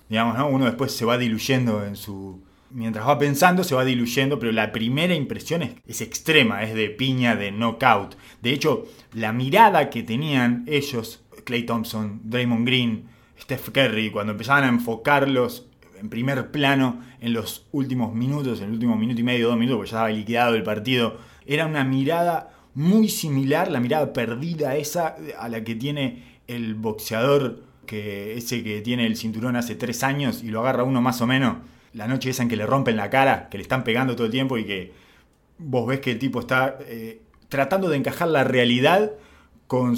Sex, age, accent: male, 20-39, Argentinian